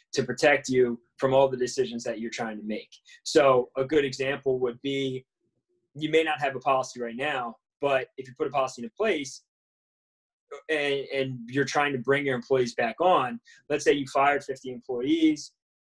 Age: 20-39